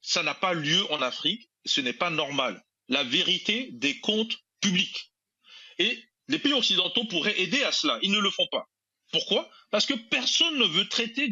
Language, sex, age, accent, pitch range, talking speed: French, male, 40-59, French, 175-255 Hz, 185 wpm